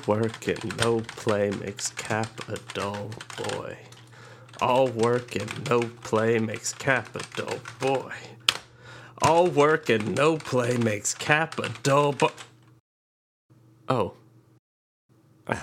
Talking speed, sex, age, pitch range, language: 125 wpm, male, 30-49, 110-135 Hz, English